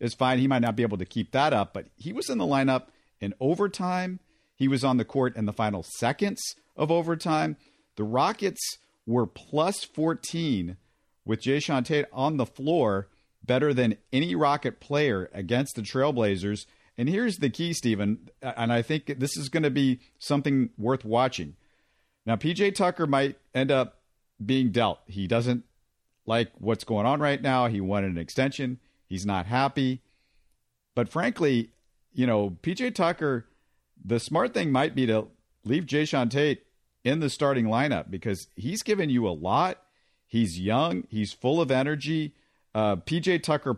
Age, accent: 50-69, American